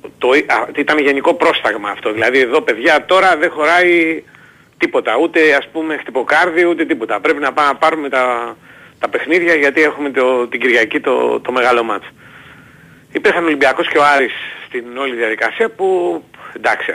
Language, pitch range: Greek, 130-180 Hz